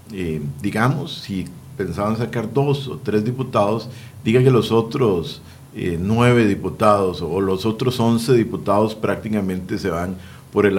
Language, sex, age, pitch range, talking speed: Spanish, male, 50-69, 95-120 Hz, 145 wpm